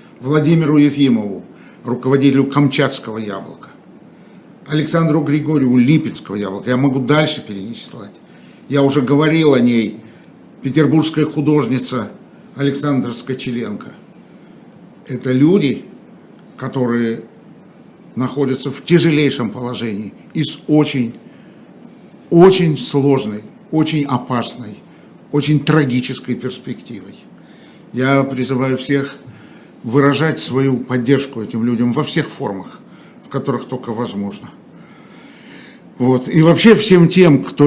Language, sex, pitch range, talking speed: Russian, male, 120-150 Hz, 95 wpm